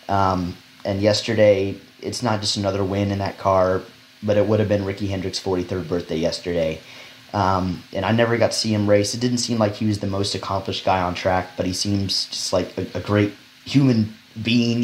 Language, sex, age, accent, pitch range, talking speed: English, male, 30-49, American, 95-110 Hz, 210 wpm